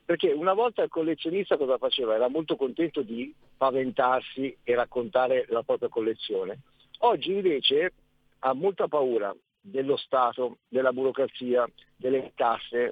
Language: Italian